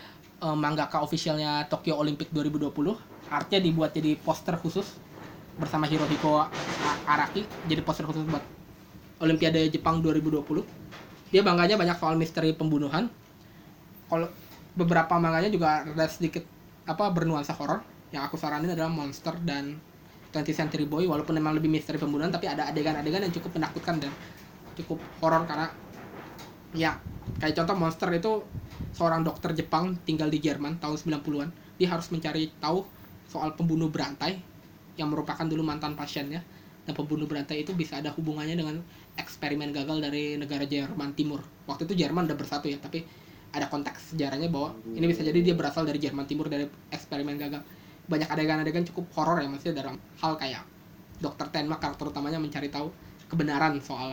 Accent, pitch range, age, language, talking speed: native, 150-165 Hz, 20-39, Indonesian, 150 wpm